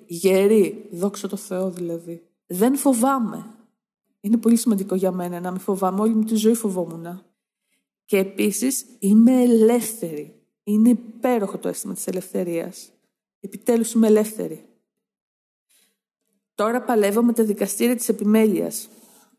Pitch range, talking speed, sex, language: 190-230 Hz, 125 wpm, female, Greek